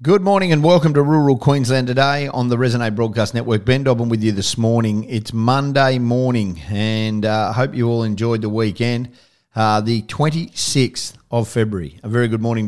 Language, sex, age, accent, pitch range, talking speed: English, male, 40-59, Australian, 110-130 Hz, 185 wpm